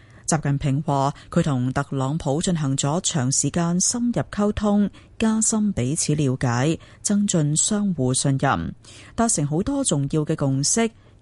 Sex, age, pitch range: female, 30-49, 130-195 Hz